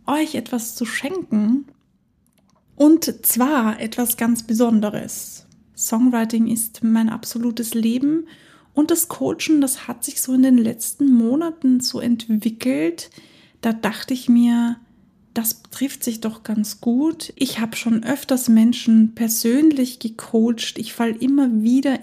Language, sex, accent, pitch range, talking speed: German, female, German, 225-260 Hz, 130 wpm